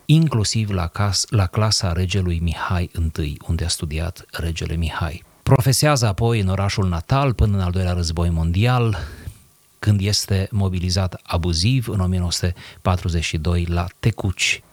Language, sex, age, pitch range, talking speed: Romanian, male, 30-49, 90-110 Hz, 125 wpm